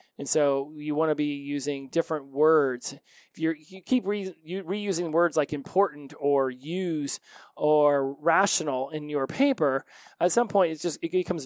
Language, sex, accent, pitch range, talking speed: English, male, American, 140-165 Hz, 145 wpm